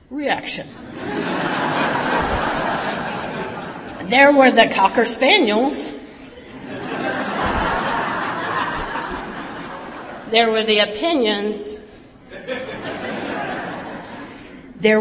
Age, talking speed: 40-59, 45 wpm